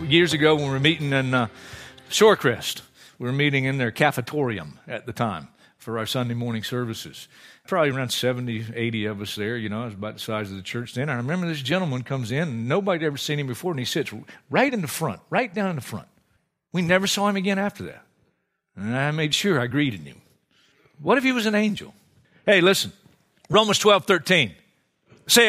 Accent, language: American, English